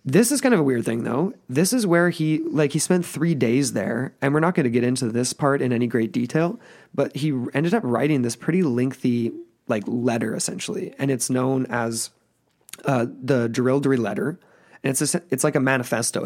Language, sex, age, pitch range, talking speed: English, male, 20-39, 120-145 Hz, 210 wpm